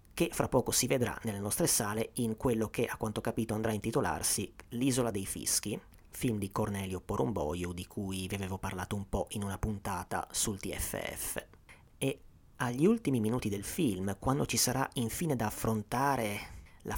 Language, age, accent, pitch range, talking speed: Italian, 30-49, native, 95-120 Hz, 175 wpm